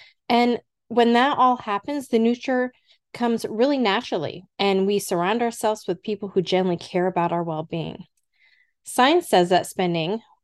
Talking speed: 150 wpm